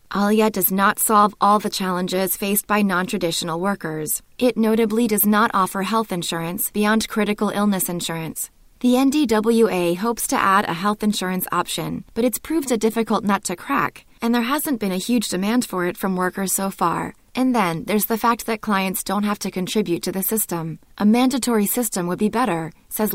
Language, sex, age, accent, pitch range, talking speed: English, female, 20-39, American, 185-225 Hz, 190 wpm